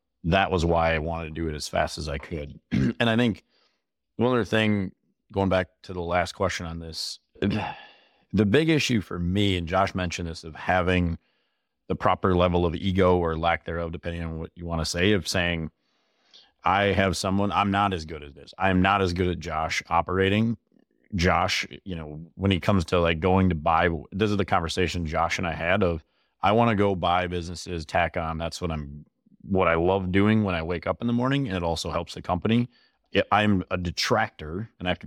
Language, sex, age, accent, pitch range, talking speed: English, male, 30-49, American, 85-100 Hz, 215 wpm